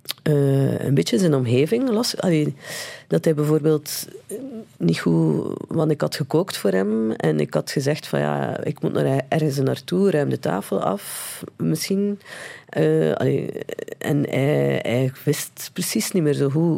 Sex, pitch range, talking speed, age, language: female, 120-160 Hz, 155 wpm, 40-59, Dutch